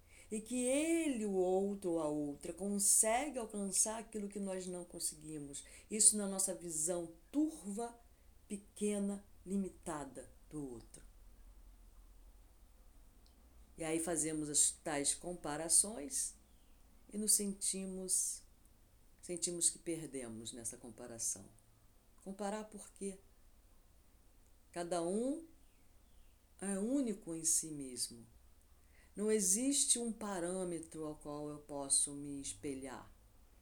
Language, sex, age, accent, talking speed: Portuguese, female, 50-69, Brazilian, 105 wpm